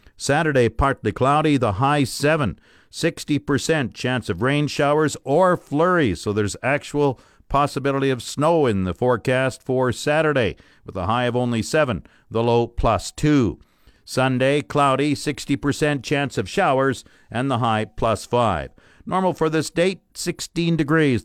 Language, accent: English, American